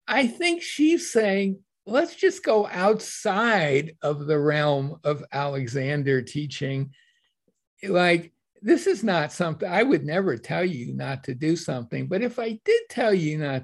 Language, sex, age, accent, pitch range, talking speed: English, male, 60-79, American, 150-210 Hz, 155 wpm